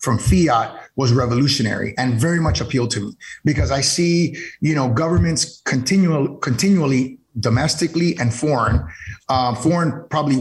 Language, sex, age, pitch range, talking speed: English, male, 30-49, 130-165 Hz, 135 wpm